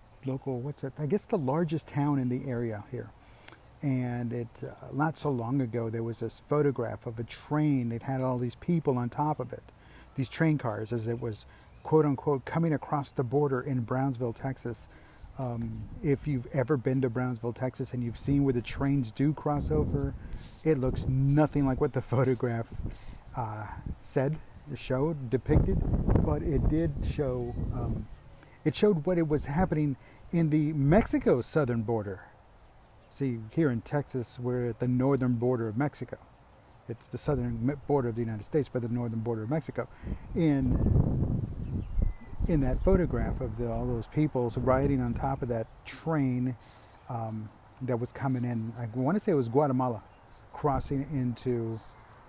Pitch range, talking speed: 115-140 Hz, 170 wpm